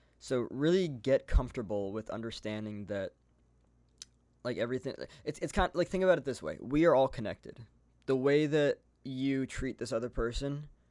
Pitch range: 85-125 Hz